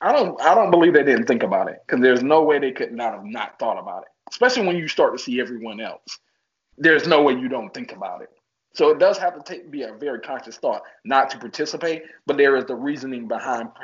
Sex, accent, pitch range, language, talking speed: male, American, 120-150 Hz, English, 245 wpm